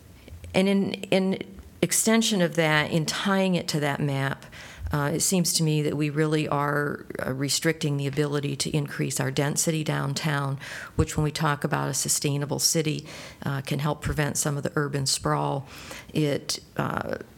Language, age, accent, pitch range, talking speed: English, 50-69, American, 135-155 Hz, 165 wpm